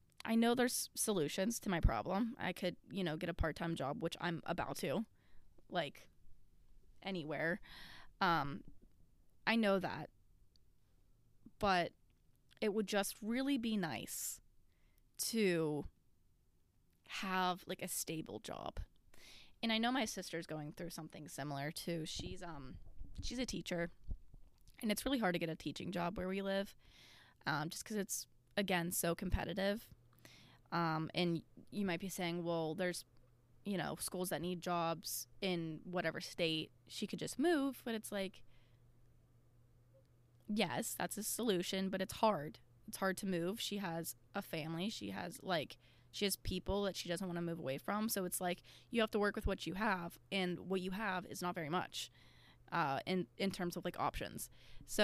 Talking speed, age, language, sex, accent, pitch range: 165 wpm, 20-39, English, female, American, 150-195 Hz